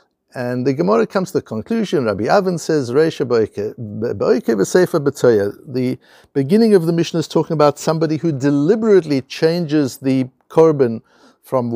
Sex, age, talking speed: male, 60-79, 140 wpm